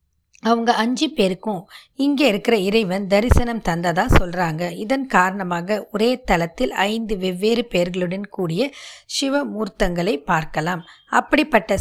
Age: 20-39